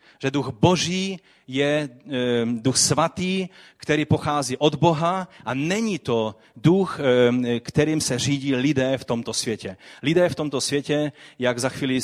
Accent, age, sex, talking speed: native, 30-49, male, 140 wpm